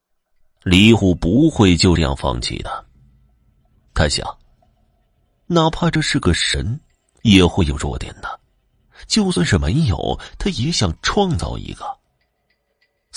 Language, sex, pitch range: Chinese, male, 75-125 Hz